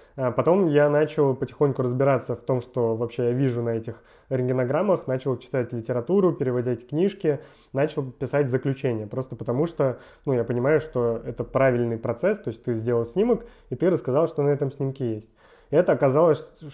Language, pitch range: Russian, 120-145 Hz